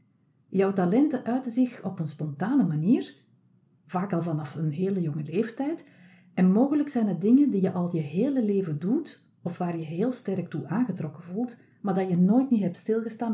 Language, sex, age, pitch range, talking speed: Dutch, female, 40-59, 160-215 Hz, 190 wpm